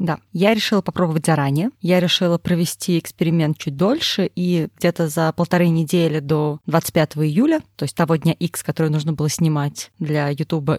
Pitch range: 160-195 Hz